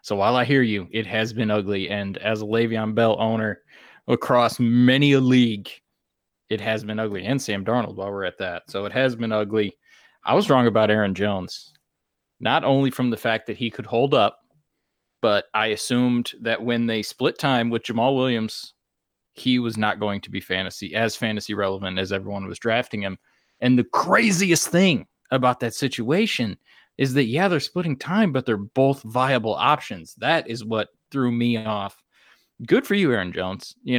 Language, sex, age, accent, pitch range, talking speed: English, male, 20-39, American, 110-135 Hz, 190 wpm